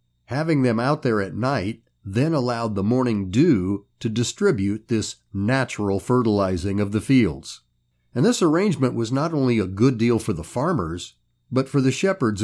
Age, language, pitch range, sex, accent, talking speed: 40-59, English, 100-135 Hz, male, American, 170 wpm